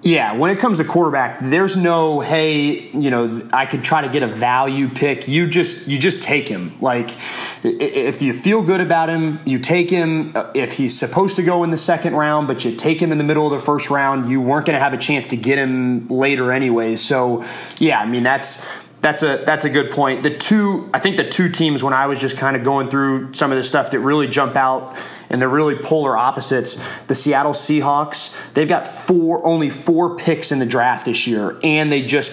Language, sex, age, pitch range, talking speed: English, male, 20-39, 130-150 Hz, 230 wpm